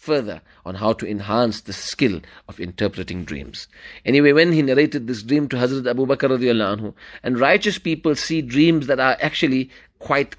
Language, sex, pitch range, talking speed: English, male, 105-130 Hz, 165 wpm